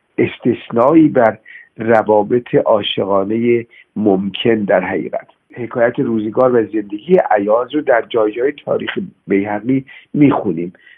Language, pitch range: Persian, 110-140 Hz